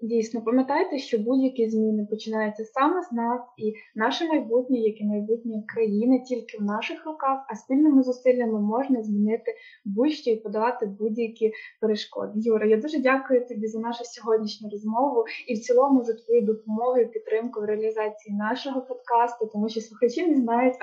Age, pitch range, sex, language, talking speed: 20-39, 220-265 Hz, female, Ukrainian, 160 wpm